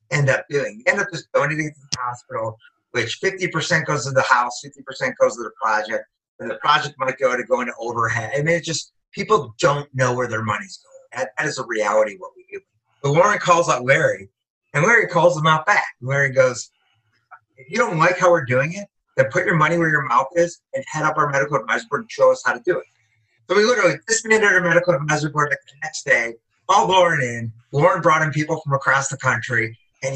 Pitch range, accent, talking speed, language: 115-170 Hz, American, 230 wpm, English